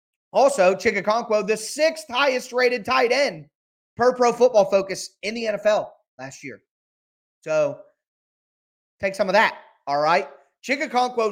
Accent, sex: American, male